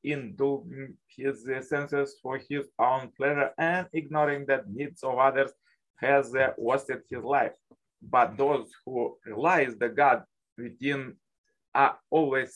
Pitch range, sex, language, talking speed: 125-145 Hz, male, English, 140 wpm